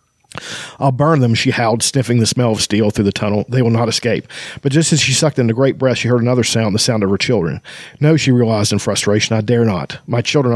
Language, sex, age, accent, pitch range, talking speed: English, male, 40-59, American, 110-135 Hz, 255 wpm